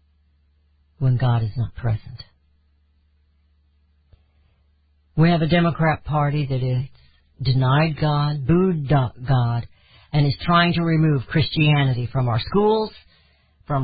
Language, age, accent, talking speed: English, 50-69, American, 115 wpm